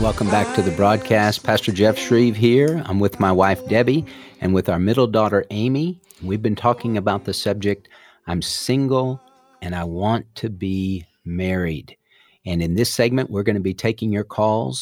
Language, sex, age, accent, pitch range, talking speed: English, male, 50-69, American, 95-115 Hz, 180 wpm